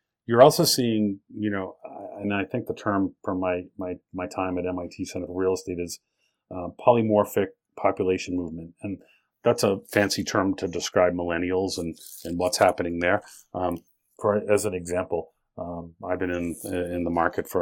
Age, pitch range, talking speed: 40-59, 90-105 Hz, 175 wpm